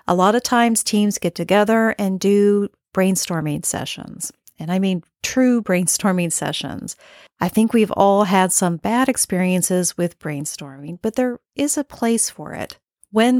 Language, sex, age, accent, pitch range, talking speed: English, female, 40-59, American, 170-210 Hz, 155 wpm